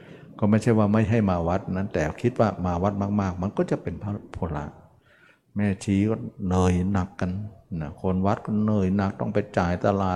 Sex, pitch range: male, 90-115 Hz